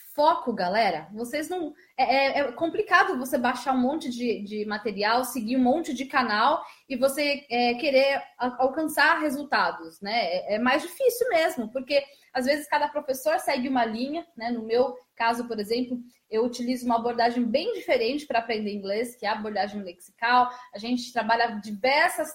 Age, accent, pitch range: 20-39, Brazilian, 225-285 Hz